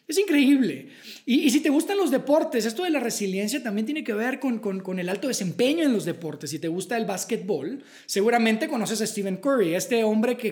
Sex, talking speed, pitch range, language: male, 220 wpm, 195-265 Hz, Spanish